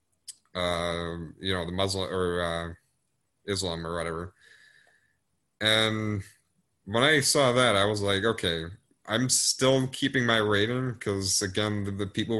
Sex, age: male, 30-49